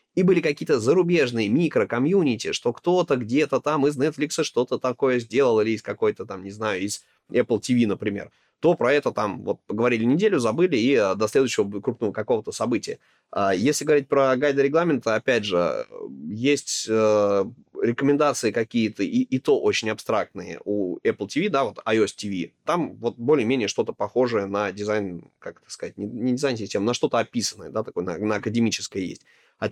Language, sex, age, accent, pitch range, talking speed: Russian, male, 20-39, native, 105-145 Hz, 170 wpm